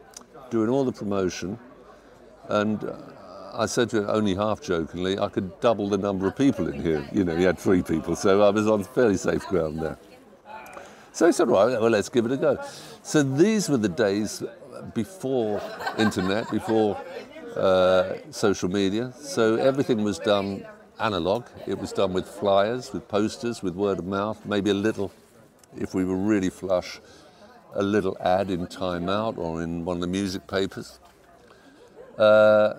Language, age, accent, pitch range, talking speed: English, 50-69, British, 90-115 Hz, 175 wpm